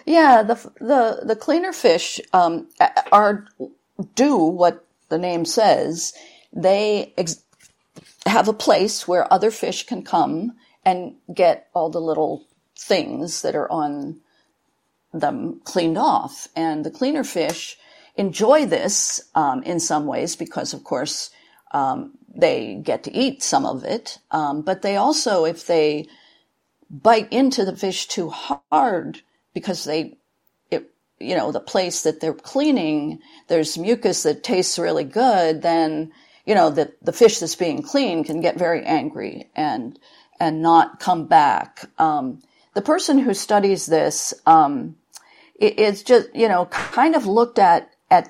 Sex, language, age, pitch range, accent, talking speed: female, English, 50-69, 175-280 Hz, American, 150 wpm